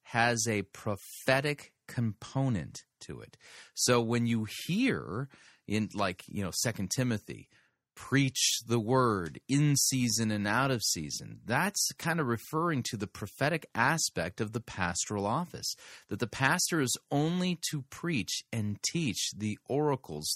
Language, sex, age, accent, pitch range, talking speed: English, male, 30-49, American, 100-135 Hz, 140 wpm